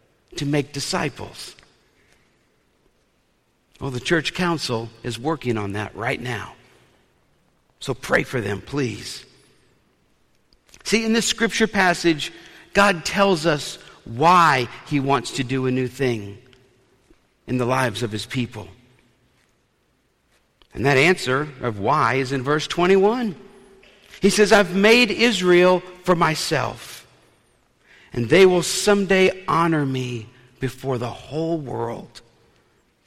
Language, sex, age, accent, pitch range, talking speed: English, male, 50-69, American, 125-185 Hz, 120 wpm